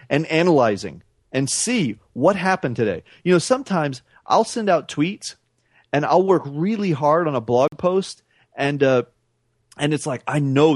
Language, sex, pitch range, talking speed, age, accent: English, male, 120-155 Hz, 165 wpm, 40-59, American